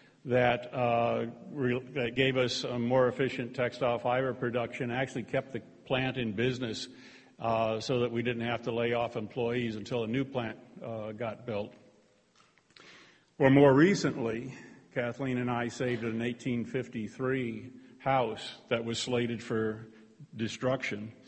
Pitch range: 115-130 Hz